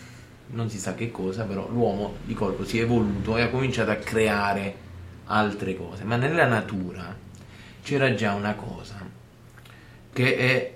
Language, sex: Italian, male